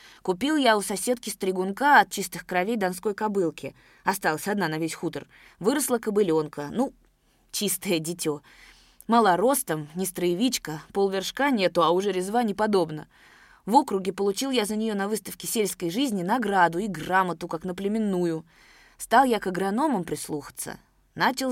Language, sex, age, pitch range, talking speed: Russian, female, 20-39, 170-220 Hz, 145 wpm